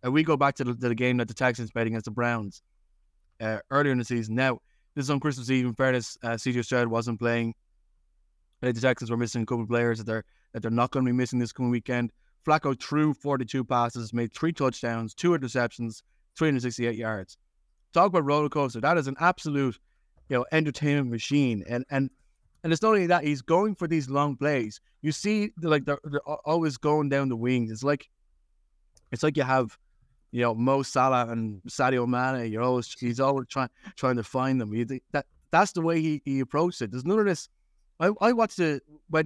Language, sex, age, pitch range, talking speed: English, male, 20-39, 115-145 Hz, 215 wpm